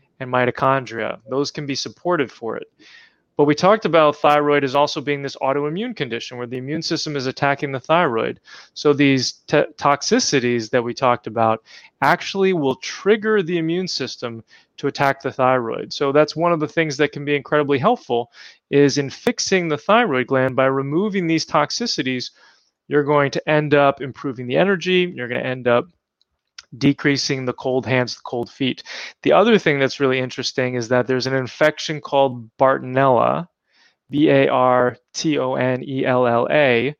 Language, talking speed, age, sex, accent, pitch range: English, 160 wpm, 30-49, male, American, 130-155 Hz